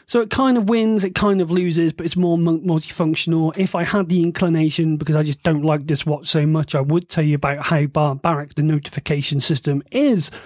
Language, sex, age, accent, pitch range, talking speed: English, male, 30-49, British, 155-200 Hz, 220 wpm